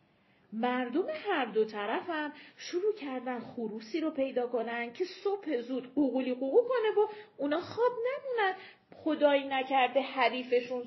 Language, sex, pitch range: Persian, female, 225-320 Hz